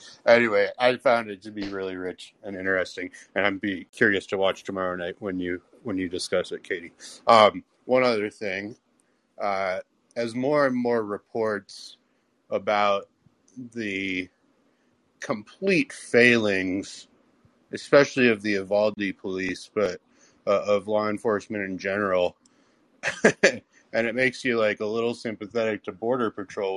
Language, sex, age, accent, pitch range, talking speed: English, male, 30-49, American, 95-125 Hz, 140 wpm